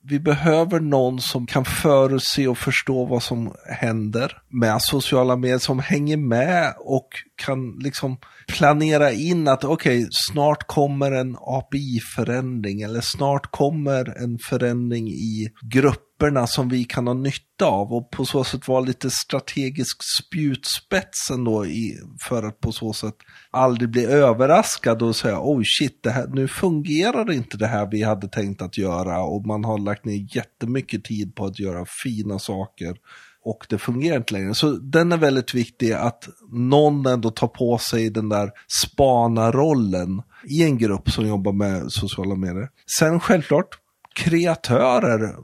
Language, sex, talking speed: Swedish, male, 155 wpm